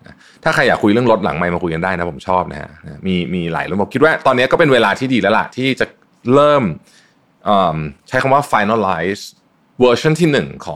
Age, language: 20-39, Thai